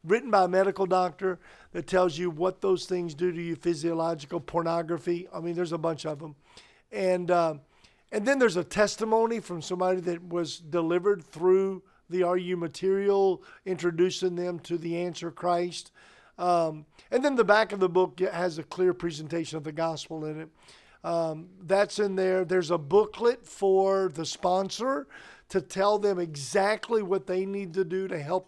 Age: 50-69